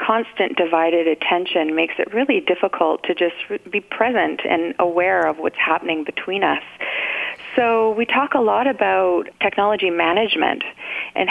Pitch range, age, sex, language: 170-200 Hz, 30-49, female, English